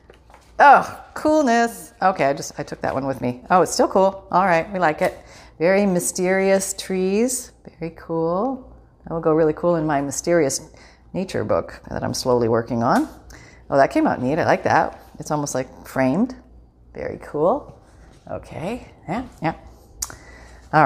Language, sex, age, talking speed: English, female, 40-59, 165 wpm